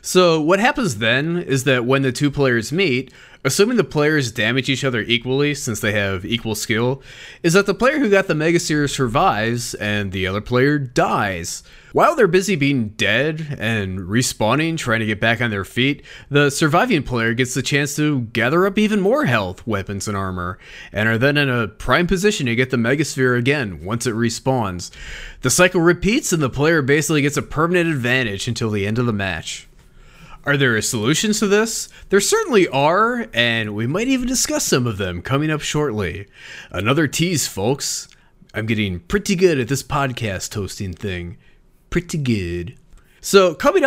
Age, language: 20-39, English